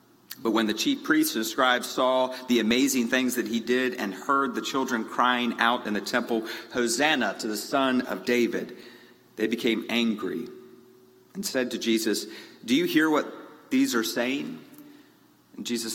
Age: 40-59